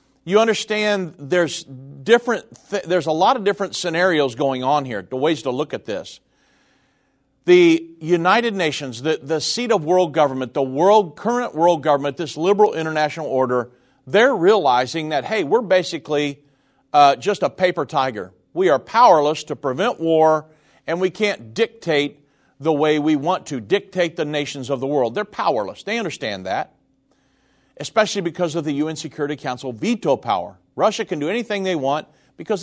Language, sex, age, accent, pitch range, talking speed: English, male, 50-69, American, 135-185 Hz, 165 wpm